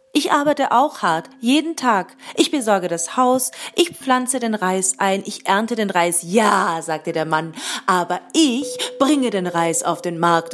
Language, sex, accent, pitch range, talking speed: German, female, German, 185-290 Hz, 175 wpm